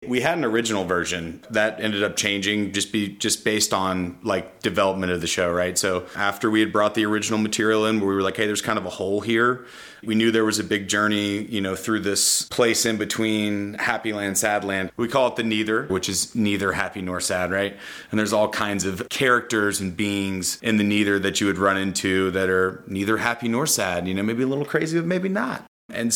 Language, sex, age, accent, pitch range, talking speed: English, male, 30-49, American, 95-110 Hz, 235 wpm